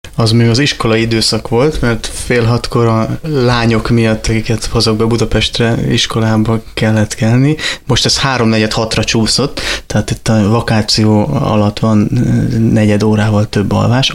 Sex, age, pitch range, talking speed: male, 20-39, 105-115 Hz, 145 wpm